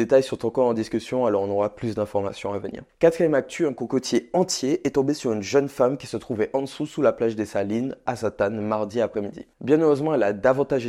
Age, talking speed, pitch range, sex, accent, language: 20-39, 230 wpm, 110-130 Hz, male, French, French